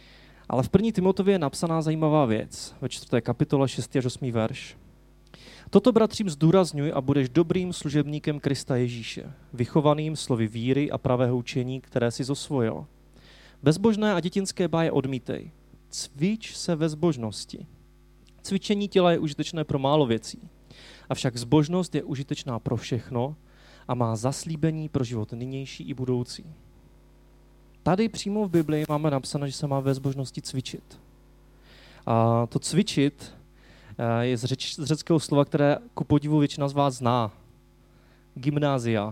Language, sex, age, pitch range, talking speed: Czech, male, 30-49, 120-160 Hz, 140 wpm